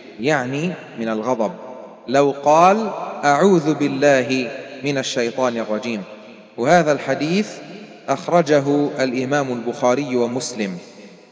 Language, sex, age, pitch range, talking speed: Arabic, male, 30-49, 135-175 Hz, 85 wpm